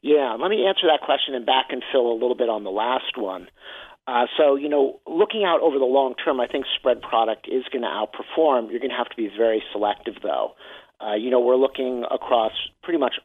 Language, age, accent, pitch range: English, 50-69, American, 115-135 Hz